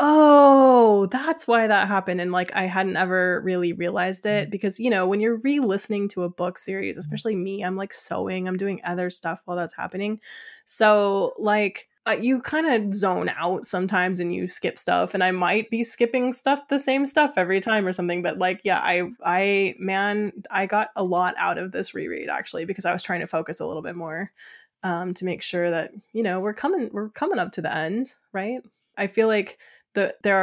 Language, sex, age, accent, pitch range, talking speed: English, female, 20-39, American, 180-220 Hz, 210 wpm